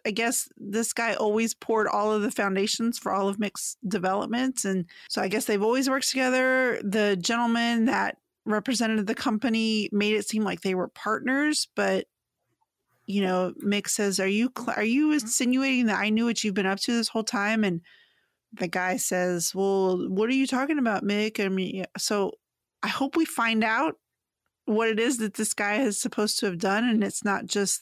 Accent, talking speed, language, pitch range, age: American, 195 wpm, English, 200-240 Hz, 30-49